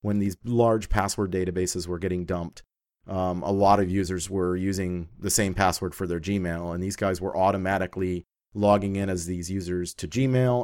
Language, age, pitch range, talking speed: English, 30-49, 90-105 Hz, 185 wpm